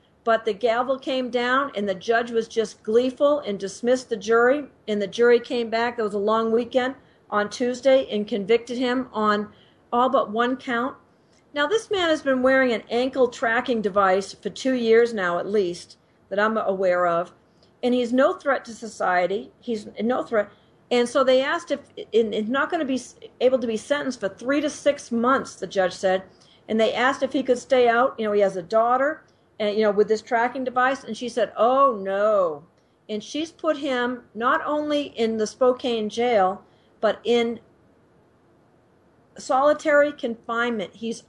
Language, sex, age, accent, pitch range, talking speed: English, female, 50-69, American, 215-255 Hz, 180 wpm